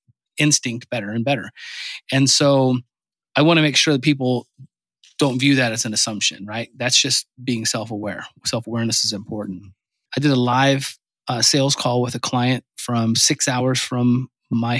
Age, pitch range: 30-49, 120-140 Hz